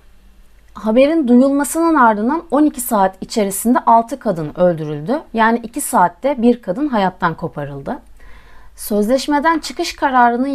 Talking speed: 110 wpm